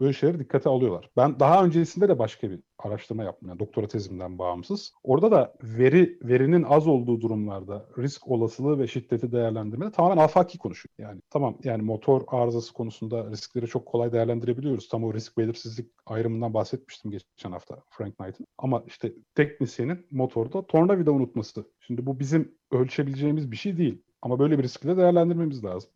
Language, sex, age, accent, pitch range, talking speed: Turkish, male, 30-49, native, 115-145 Hz, 160 wpm